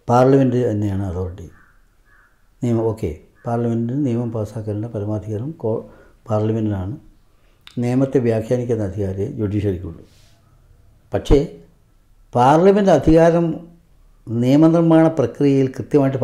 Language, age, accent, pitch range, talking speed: Malayalam, 60-79, native, 110-150 Hz, 75 wpm